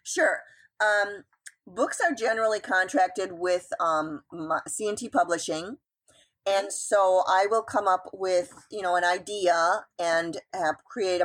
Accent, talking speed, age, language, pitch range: American, 135 wpm, 40-59, English, 160-205 Hz